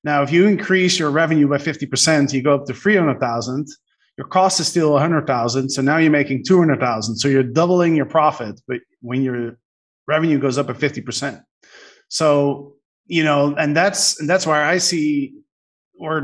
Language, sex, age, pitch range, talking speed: English, male, 30-49, 135-160 Hz, 205 wpm